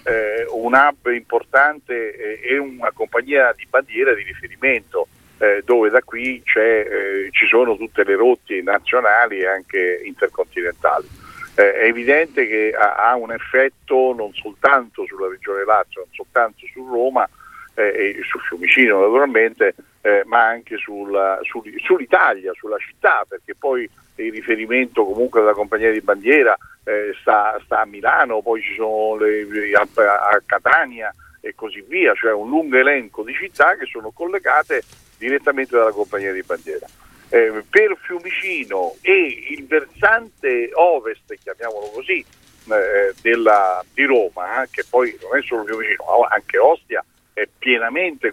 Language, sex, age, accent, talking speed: Italian, male, 50-69, native, 145 wpm